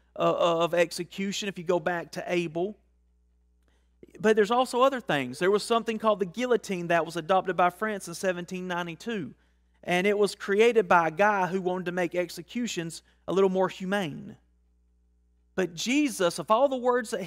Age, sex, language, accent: 40-59, male, English, American